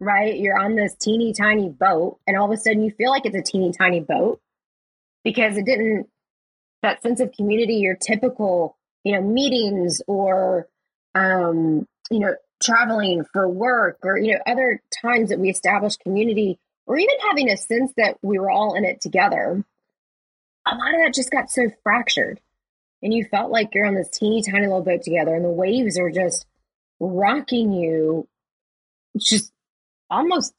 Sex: female